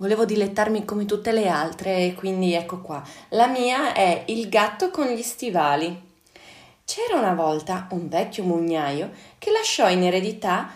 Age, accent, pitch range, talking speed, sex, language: 30-49, native, 165-230 Hz, 150 wpm, female, Italian